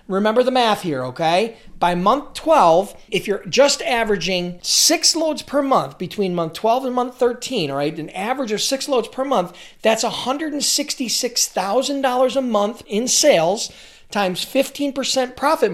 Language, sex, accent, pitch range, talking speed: English, male, American, 170-245 Hz, 155 wpm